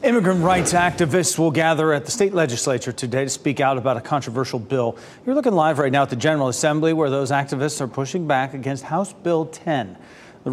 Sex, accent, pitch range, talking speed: male, American, 125-160 Hz, 210 wpm